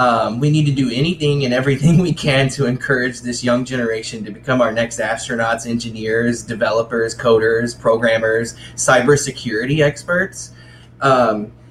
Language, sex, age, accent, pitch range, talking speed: English, male, 20-39, American, 115-140 Hz, 140 wpm